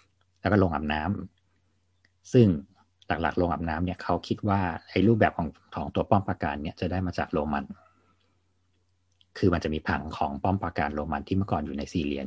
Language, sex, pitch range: Thai, male, 85-95 Hz